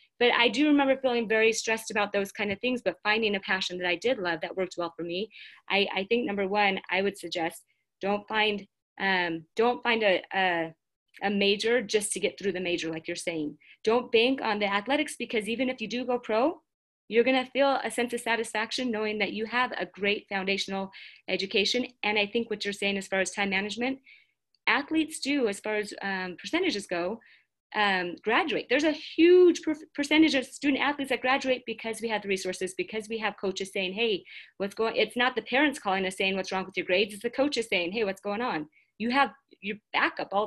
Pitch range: 195-260 Hz